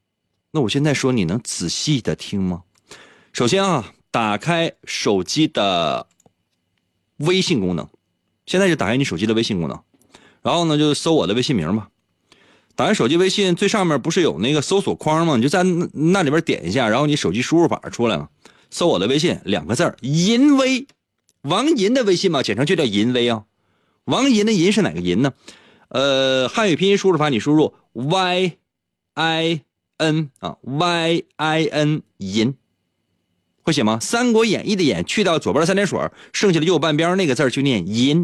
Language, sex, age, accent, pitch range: Chinese, male, 30-49, native, 115-175 Hz